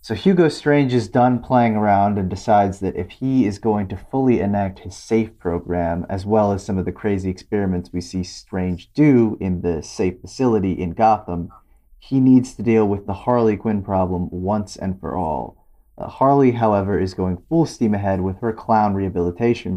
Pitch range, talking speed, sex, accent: 90-115 Hz, 190 wpm, male, American